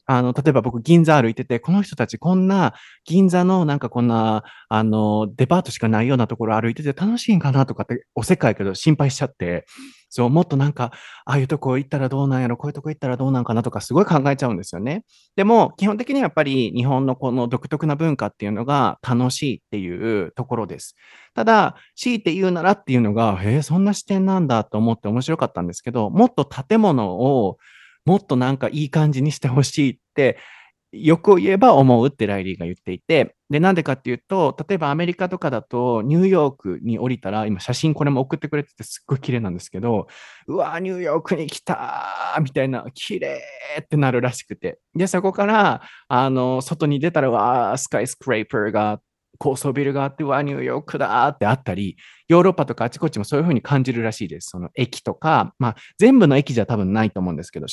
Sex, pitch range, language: male, 115-160 Hz, Japanese